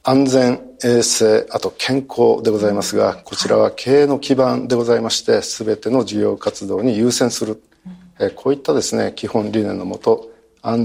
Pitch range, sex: 110-135 Hz, male